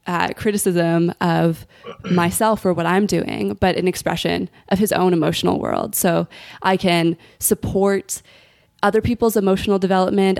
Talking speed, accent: 140 wpm, American